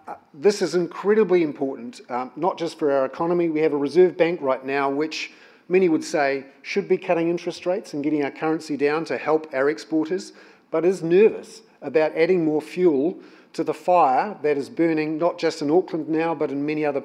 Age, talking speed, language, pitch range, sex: 40-59, 205 wpm, English, 145-180 Hz, male